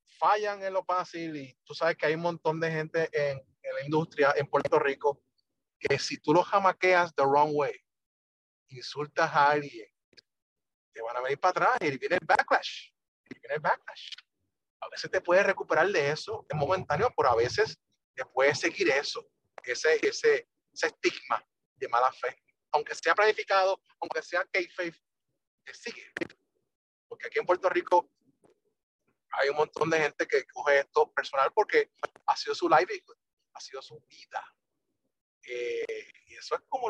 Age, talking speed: 30-49, 170 wpm